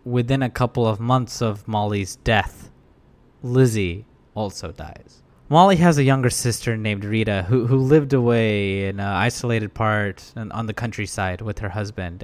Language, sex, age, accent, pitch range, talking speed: English, male, 20-39, American, 105-130 Hz, 160 wpm